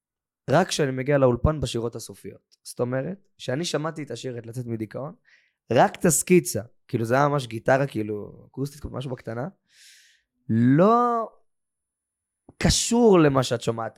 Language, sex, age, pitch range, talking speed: Hebrew, male, 20-39, 105-130 Hz, 130 wpm